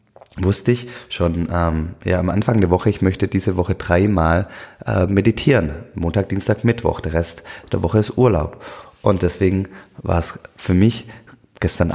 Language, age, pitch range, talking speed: German, 30-49, 85-100 Hz, 160 wpm